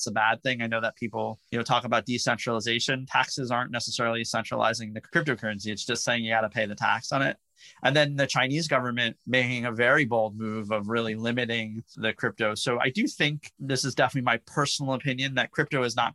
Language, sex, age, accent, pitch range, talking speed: English, male, 30-49, American, 110-130 Hz, 215 wpm